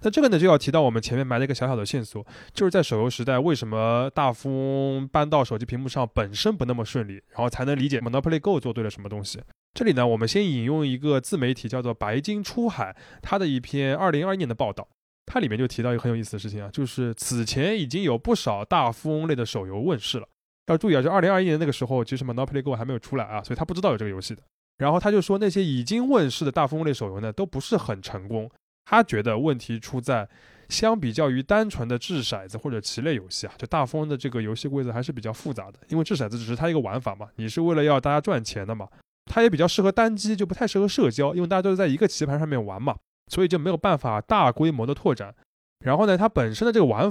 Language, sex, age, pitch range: Chinese, male, 20-39, 120-165 Hz